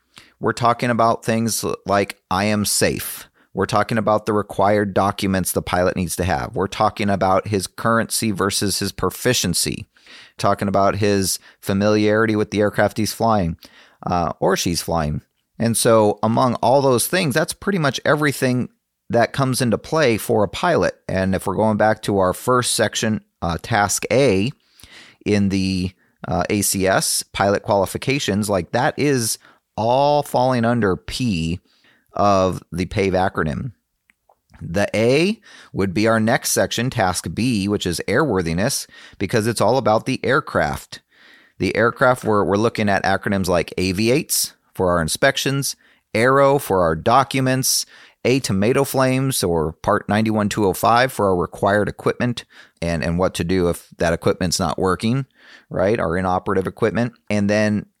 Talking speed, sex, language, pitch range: 150 wpm, male, English, 95-120 Hz